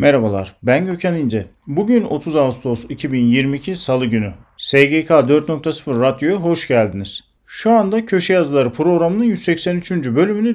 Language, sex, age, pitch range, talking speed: Turkish, male, 40-59, 125-185 Hz, 125 wpm